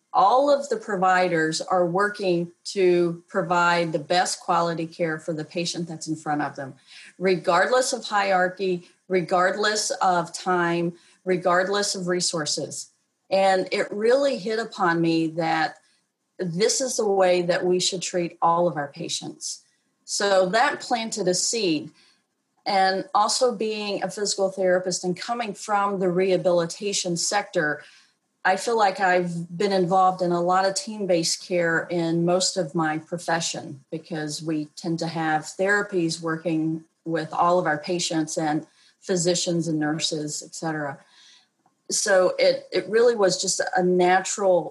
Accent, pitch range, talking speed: American, 170-195 Hz, 145 wpm